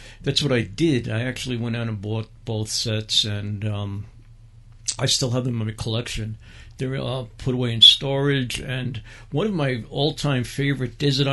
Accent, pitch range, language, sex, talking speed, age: American, 110-130 Hz, English, male, 185 wpm, 60-79